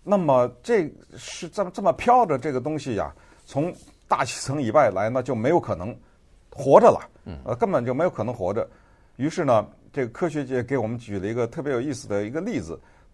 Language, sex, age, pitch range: Chinese, male, 50-69, 100-145 Hz